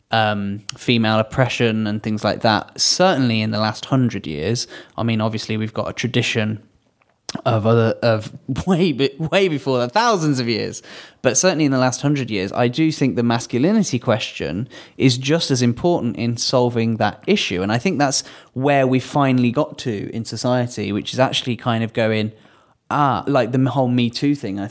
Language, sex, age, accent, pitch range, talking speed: English, male, 10-29, British, 110-135 Hz, 185 wpm